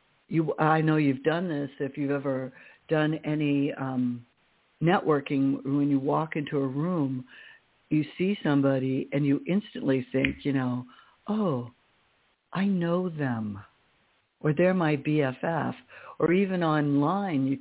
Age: 60-79